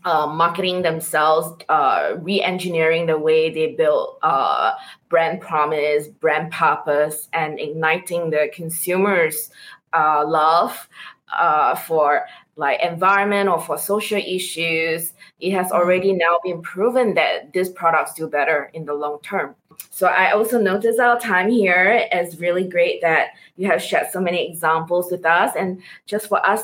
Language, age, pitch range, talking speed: English, 20-39, 160-195 Hz, 150 wpm